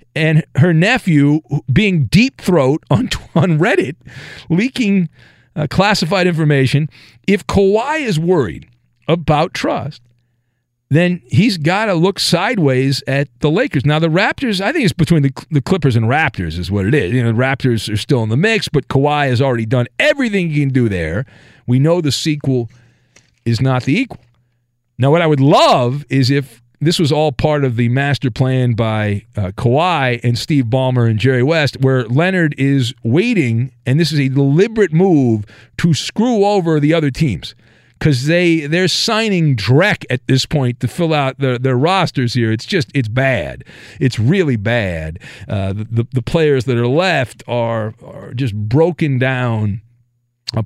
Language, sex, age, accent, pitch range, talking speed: English, male, 40-59, American, 120-165 Hz, 170 wpm